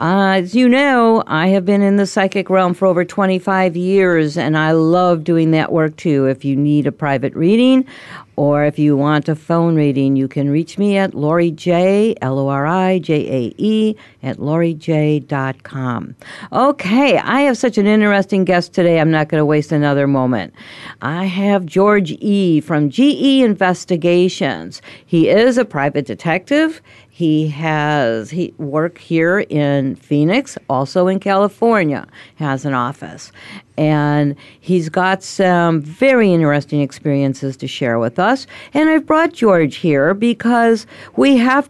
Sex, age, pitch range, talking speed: female, 50-69, 145-185 Hz, 160 wpm